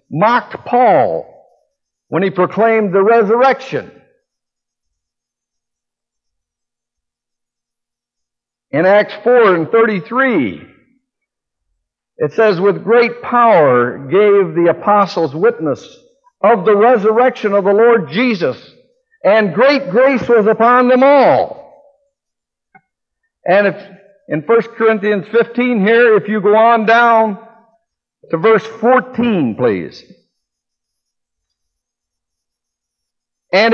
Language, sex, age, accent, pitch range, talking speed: English, male, 60-79, American, 205-265 Hz, 90 wpm